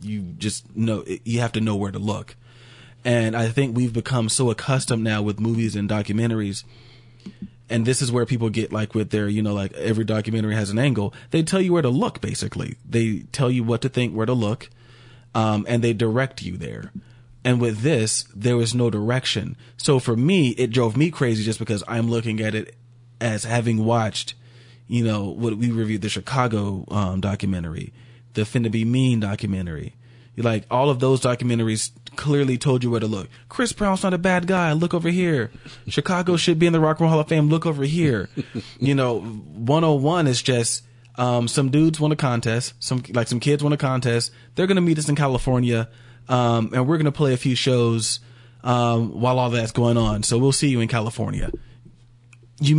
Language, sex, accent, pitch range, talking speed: English, male, American, 115-130 Hz, 210 wpm